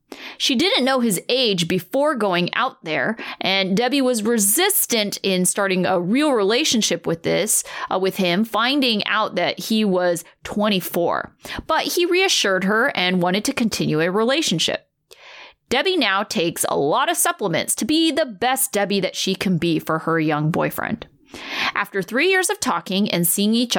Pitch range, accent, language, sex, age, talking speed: 185-290 Hz, American, English, female, 30-49, 170 wpm